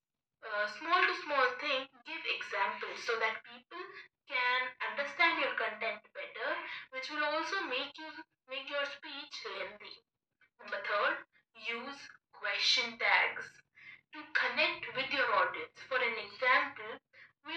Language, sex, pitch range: English, female, 260-345 Hz